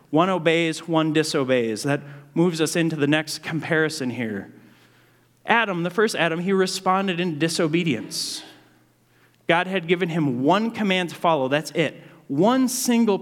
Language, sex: English, male